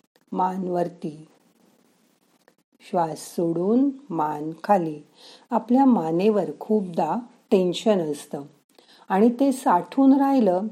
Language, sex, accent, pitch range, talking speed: Marathi, female, native, 170-235 Hz, 80 wpm